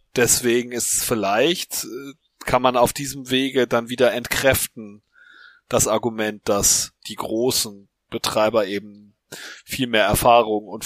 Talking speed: 120 wpm